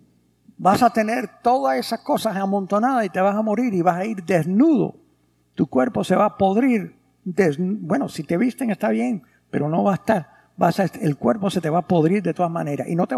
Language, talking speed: English, 230 wpm